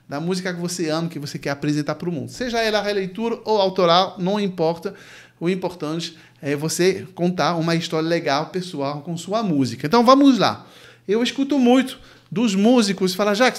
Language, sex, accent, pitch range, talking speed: Portuguese, male, Brazilian, 170-230 Hz, 180 wpm